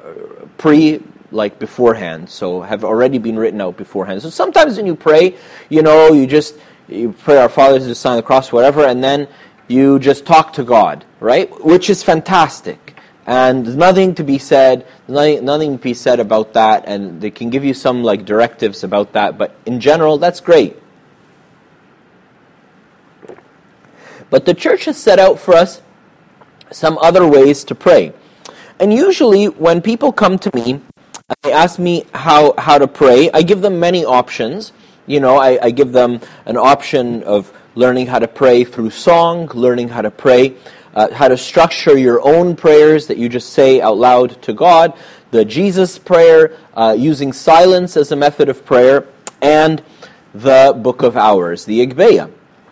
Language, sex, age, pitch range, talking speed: English, male, 30-49, 125-170 Hz, 170 wpm